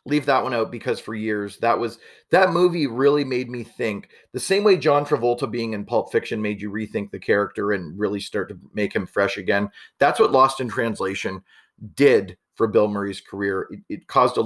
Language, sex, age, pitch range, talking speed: English, male, 30-49, 110-150 Hz, 210 wpm